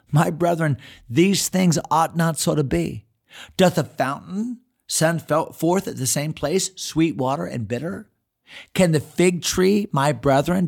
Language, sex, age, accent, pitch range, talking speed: English, male, 40-59, American, 130-175 Hz, 155 wpm